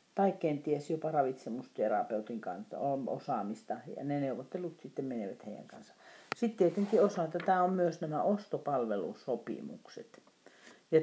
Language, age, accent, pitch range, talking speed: Finnish, 40-59, native, 145-180 Hz, 120 wpm